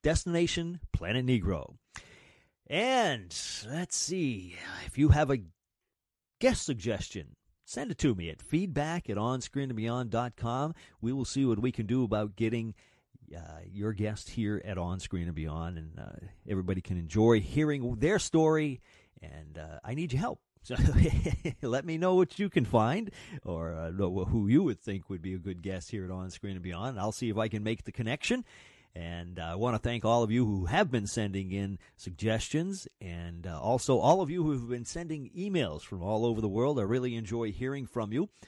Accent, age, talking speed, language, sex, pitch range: American, 40-59, 195 wpm, English, male, 95-140 Hz